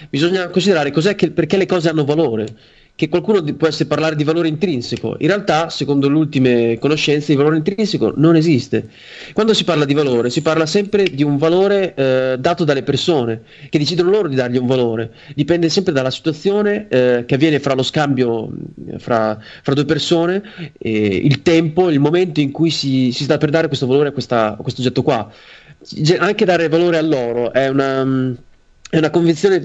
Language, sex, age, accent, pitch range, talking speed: Italian, male, 30-49, native, 130-170 Hz, 195 wpm